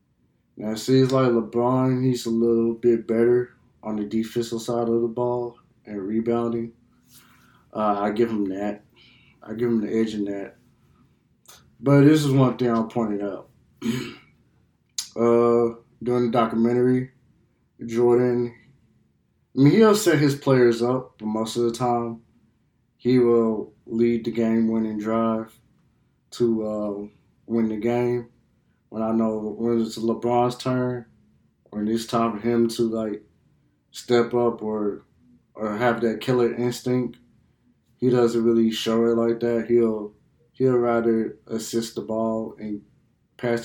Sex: male